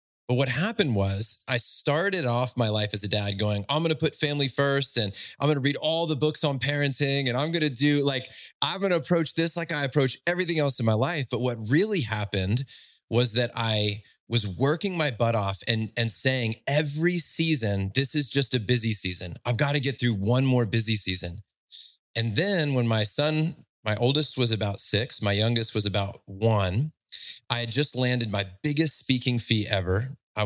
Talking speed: 205 wpm